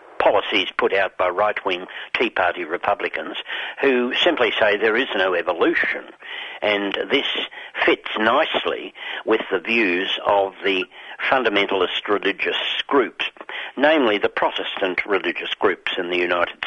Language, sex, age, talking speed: English, male, 60-79, 130 wpm